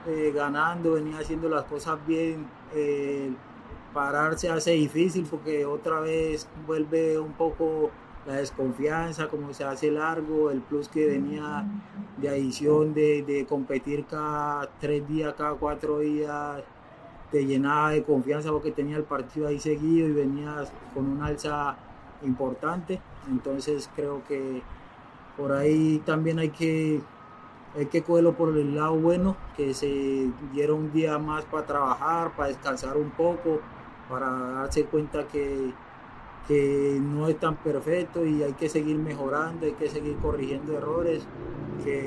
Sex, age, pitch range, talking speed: male, 30-49, 140-155 Hz, 145 wpm